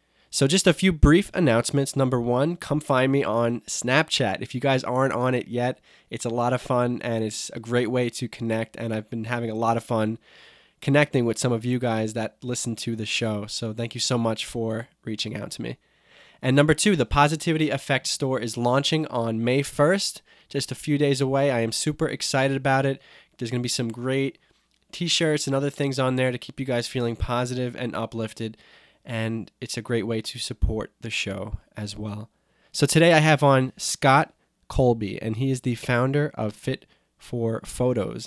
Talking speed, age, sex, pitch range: 205 wpm, 20-39, male, 115-140 Hz